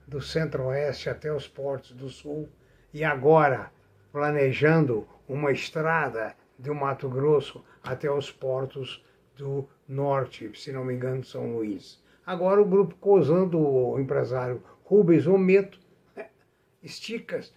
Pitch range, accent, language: 135-195 Hz, Brazilian, Portuguese